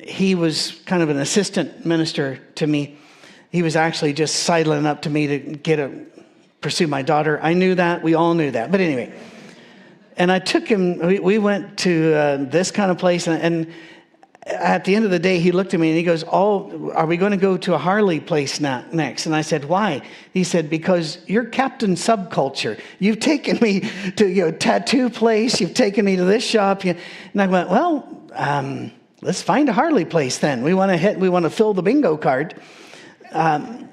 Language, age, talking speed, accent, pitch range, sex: English, 50-69, 210 wpm, American, 155-205 Hz, male